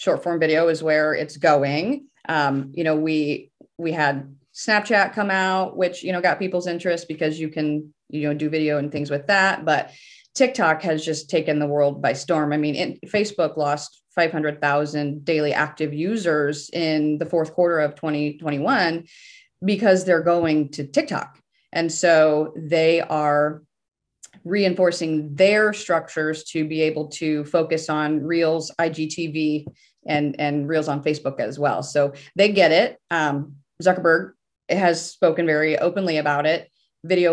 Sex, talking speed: female, 155 wpm